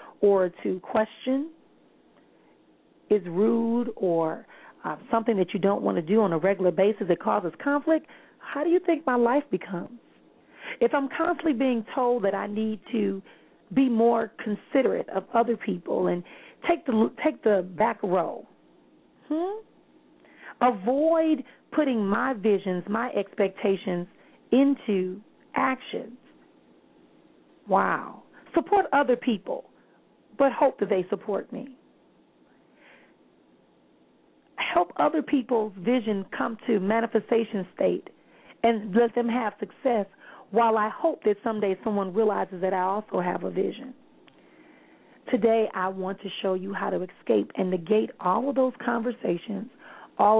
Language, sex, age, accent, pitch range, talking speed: English, female, 40-59, American, 195-255 Hz, 130 wpm